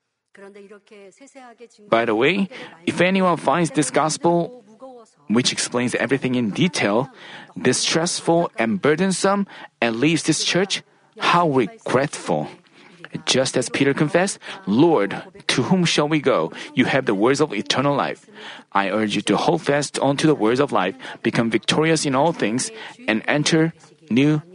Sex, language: male, Korean